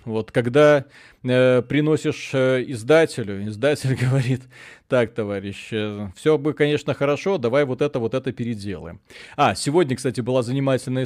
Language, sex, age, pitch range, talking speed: Russian, male, 30-49, 115-140 Hz, 140 wpm